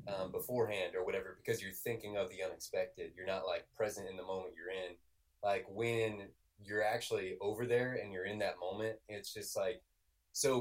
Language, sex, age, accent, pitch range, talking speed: English, male, 20-39, American, 90-110 Hz, 190 wpm